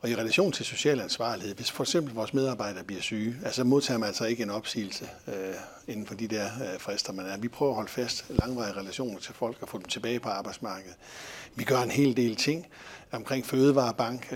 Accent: native